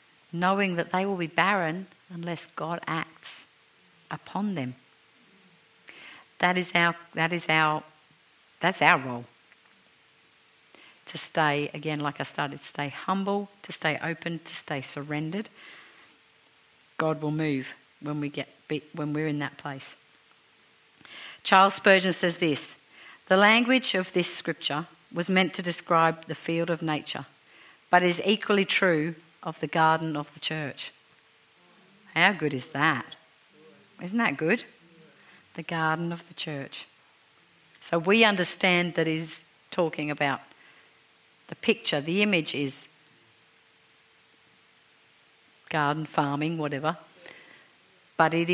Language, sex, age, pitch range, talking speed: English, female, 50-69, 150-175 Hz, 125 wpm